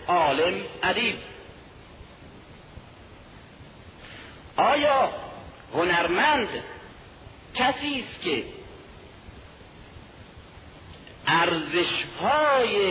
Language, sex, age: Persian, male, 50-69